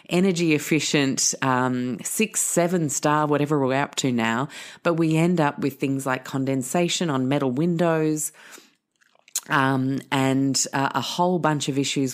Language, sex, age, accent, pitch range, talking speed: English, female, 30-49, Australian, 125-160 Hz, 150 wpm